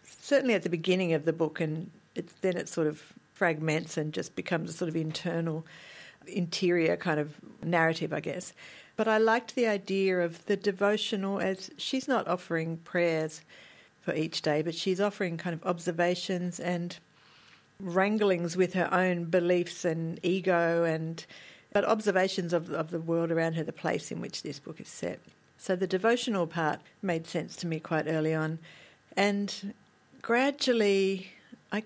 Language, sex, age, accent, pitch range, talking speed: English, female, 50-69, Australian, 165-200 Hz, 165 wpm